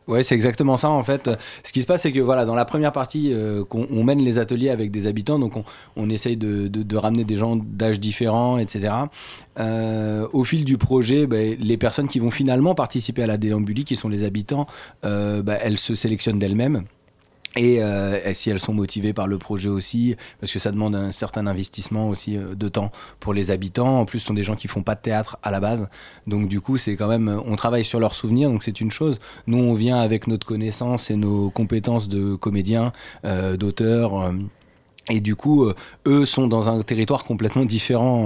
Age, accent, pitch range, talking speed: 30-49, French, 105-125 Hz, 225 wpm